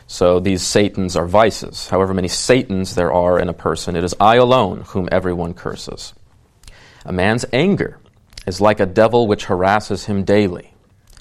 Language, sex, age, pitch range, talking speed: English, male, 40-59, 90-110 Hz, 165 wpm